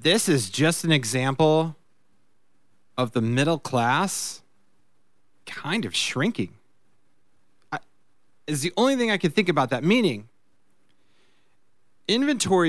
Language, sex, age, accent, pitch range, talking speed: English, male, 30-49, American, 115-155 Hz, 115 wpm